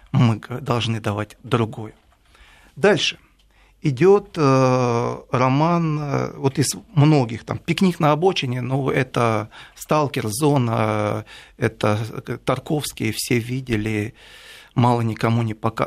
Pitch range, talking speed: 115-145 Hz, 95 wpm